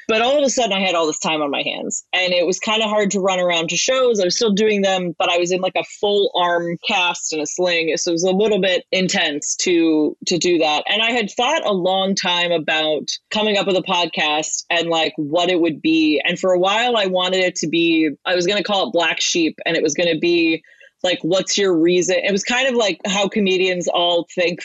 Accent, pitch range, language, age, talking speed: American, 170-200 Hz, English, 20-39, 260 wpm